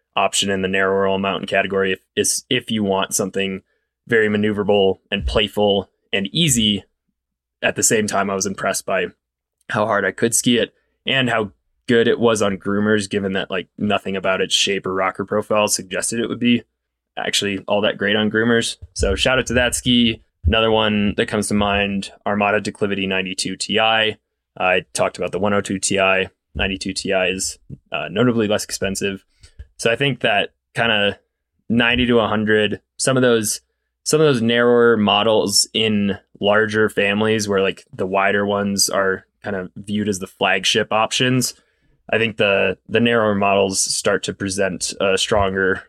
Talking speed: 170 wpm